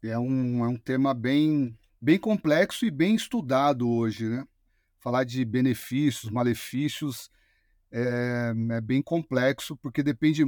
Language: Portuguese